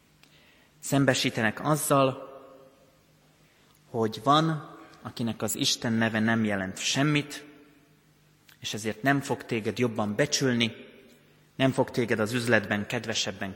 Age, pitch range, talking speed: 30-49, 110-135 Hz, 105 wpm